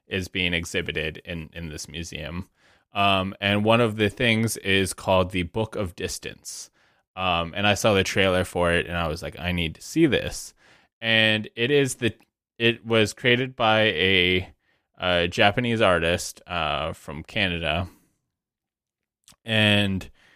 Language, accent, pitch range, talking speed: English, American, 85-105 Hz, 155 wpm